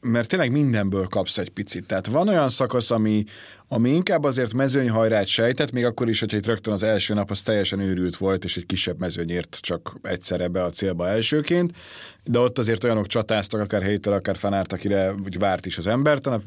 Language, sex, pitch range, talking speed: Hungarian, male, 100-130 Hz, 200 wpm